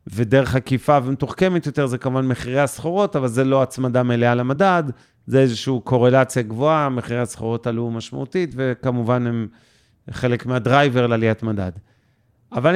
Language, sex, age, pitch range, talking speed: Hebrew, male, 40-59, 115-135 Hz, 135 wpm